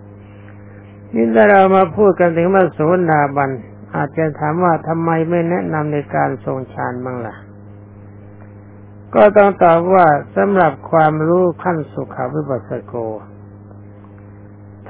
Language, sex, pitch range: Thai, male, 100-165 Hz